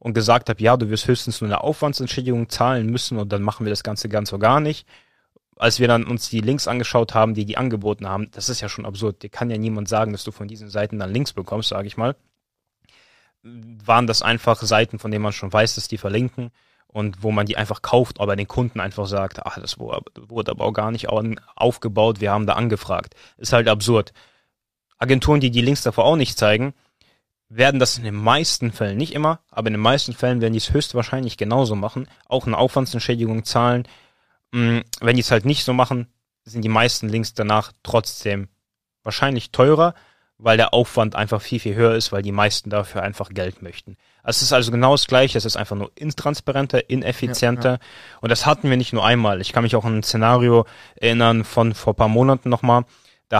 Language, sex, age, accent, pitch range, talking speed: German, male, 20-39, German, 105-125 Hz, 210 wpm